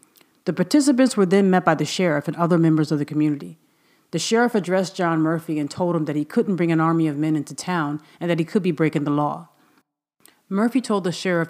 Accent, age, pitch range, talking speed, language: American, 40-59, 150-180 Hz, 230 wpm, English